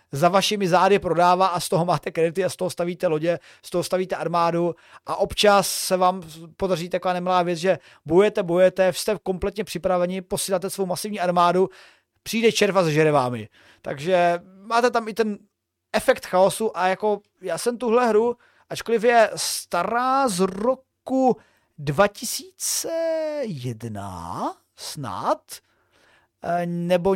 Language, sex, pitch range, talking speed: Czech, male, 175-215 Hz, 135 wpm